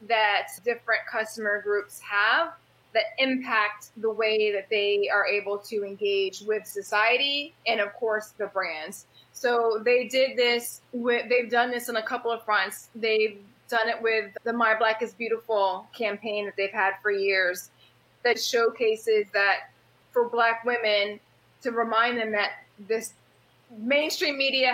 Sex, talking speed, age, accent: female, 155 wpm, 20-39, American